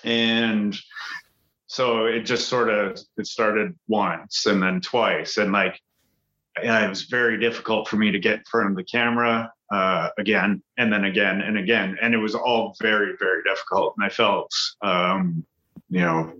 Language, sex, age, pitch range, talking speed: English, male, 30-49, 100-120 Hz, 170 wpm